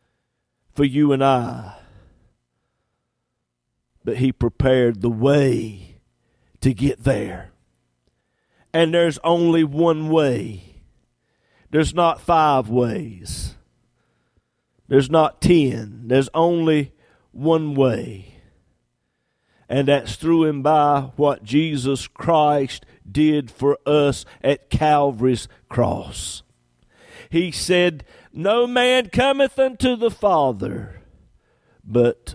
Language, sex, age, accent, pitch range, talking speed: English, male, 50-69, American, 115-165 Hz, 95 wpm